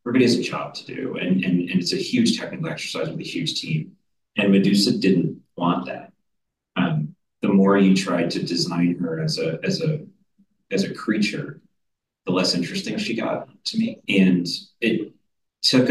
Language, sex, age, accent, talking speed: English, male, 30-49, American, 180 wpm